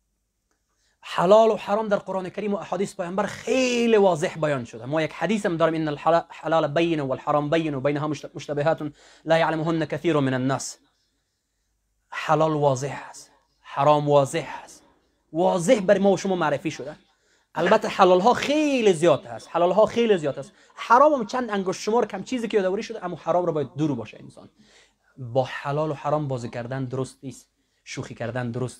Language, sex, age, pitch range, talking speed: English, male, 30-49, 135-175 Hz, 170 wpm